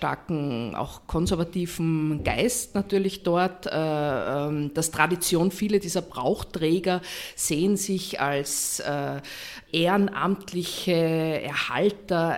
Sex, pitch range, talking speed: female, 150-185 Hz, 80 wpm